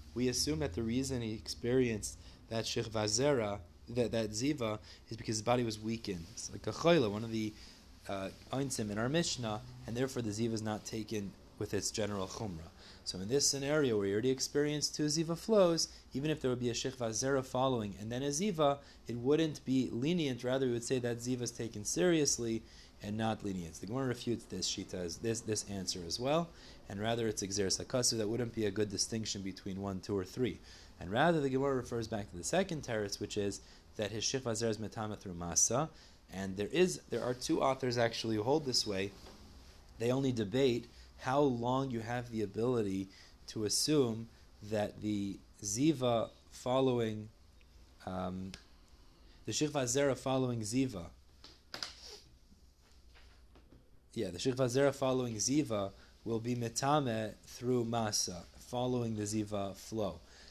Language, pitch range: English, 100-130 Hz